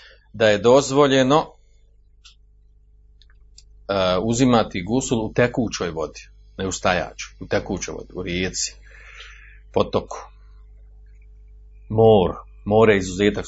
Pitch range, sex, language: 90-115 Hz, male, Croatian